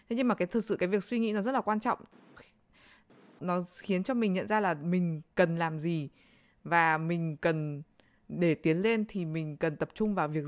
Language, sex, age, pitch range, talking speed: Vietnamese, female, 20-39, 160-210 Hz, 225 wpm